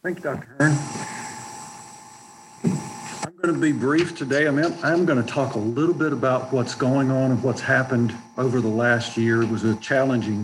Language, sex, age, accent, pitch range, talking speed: English, male, 50-69, American, 120-140 Hz, 180 wpm